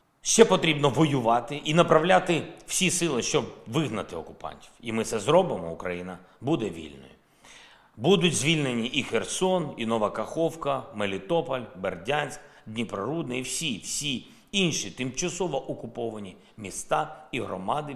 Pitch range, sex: 120-165 Hz, male